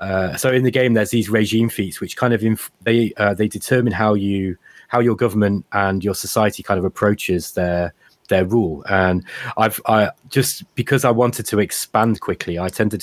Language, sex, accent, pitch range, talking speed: English, male, British, 100-130 Hz, 200 wpm